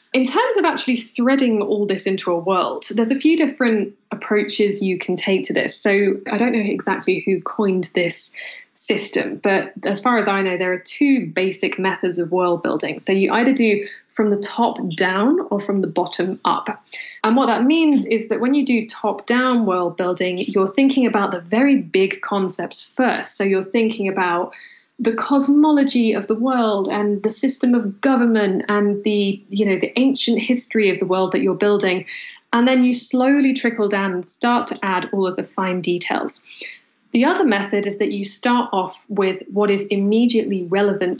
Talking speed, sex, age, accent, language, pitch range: 190 wpm, female, 10-29, British, English, 195-250 Hz